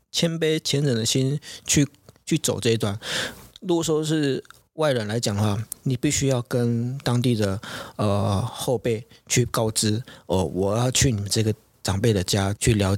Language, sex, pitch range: Chinese, male, 110-135 Hz